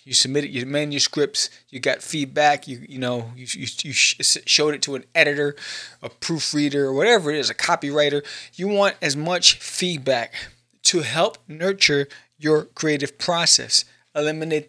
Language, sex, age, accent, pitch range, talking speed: English, male, 20-39, American, 130-175 Hz, 155 wpm